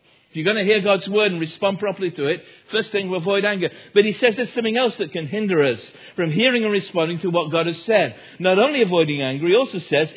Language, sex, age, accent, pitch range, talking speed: English, male, 50-69, British, 150-195 Hz, 250 wpm